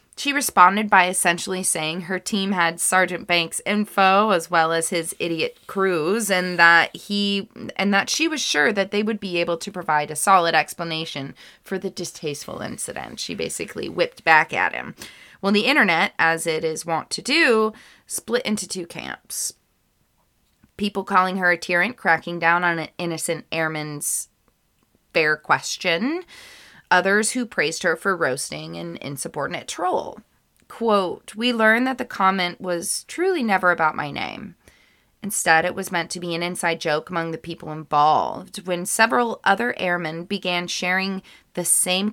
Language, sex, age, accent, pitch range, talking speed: English, female, 20-39, American, 165-205 Hz, 160 wpm